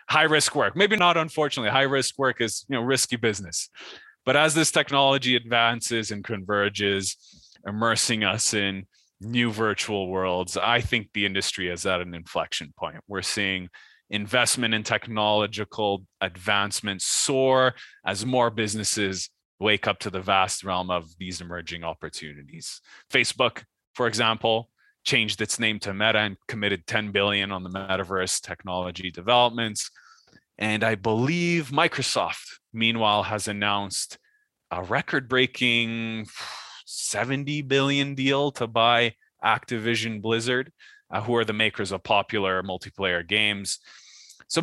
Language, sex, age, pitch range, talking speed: English, male, 20-39, 95-125 Hz, 135 wpm